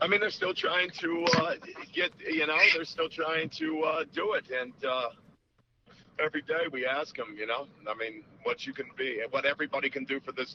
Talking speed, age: 215 wpm, 50-69